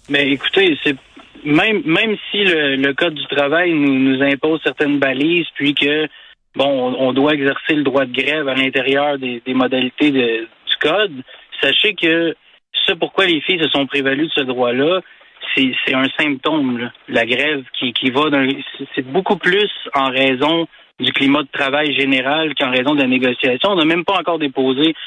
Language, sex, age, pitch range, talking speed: French, male, 30-49, 130-155 Hz, 190 wpm